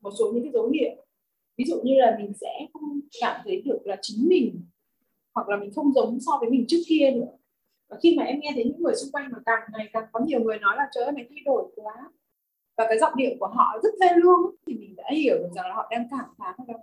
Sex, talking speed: female, 270 wpm